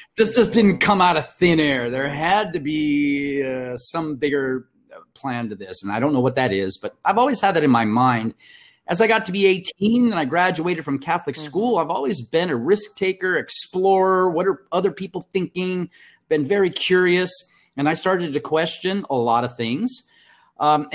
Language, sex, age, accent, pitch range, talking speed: English, male, 30-49, American, 135-185 Hz, 200 wpm